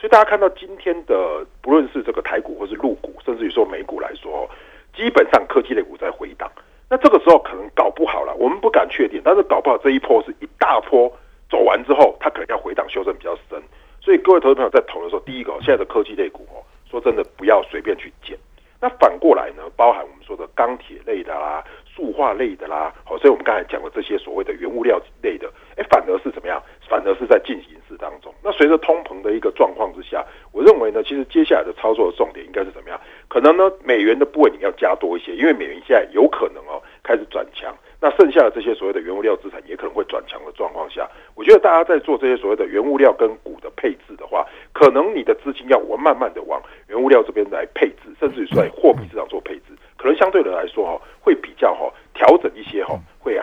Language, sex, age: Chinese, male, 50-69